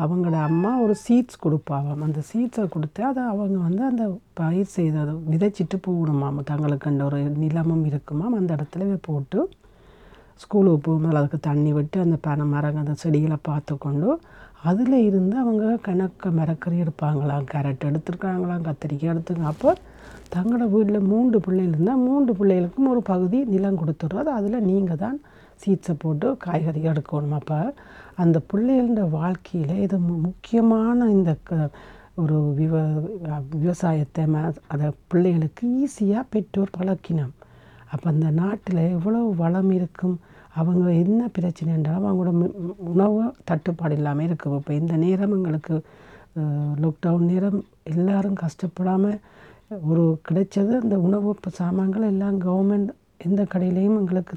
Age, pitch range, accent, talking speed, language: 60-79, 155-200 Hz, native, 125 wpm, Tamil